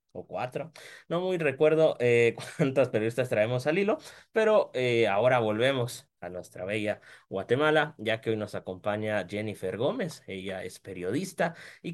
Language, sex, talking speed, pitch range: Spanish, male, 150 wpm, 100-155 Hz